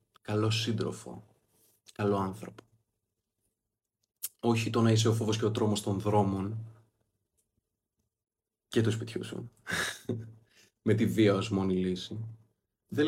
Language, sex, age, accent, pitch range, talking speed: Greek, male, 20-39, native, 105-115 Hz, 120 wpm